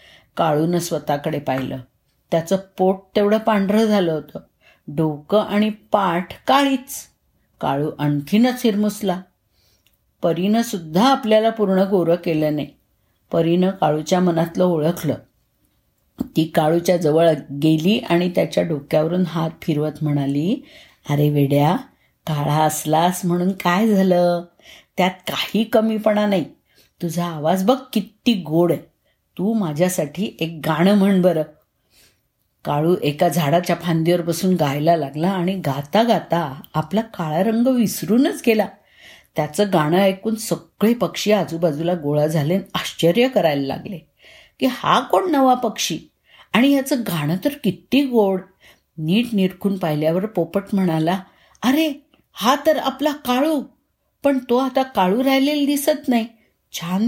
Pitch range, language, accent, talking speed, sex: 160-215 Hz, Marathi, native, 120 wpm, female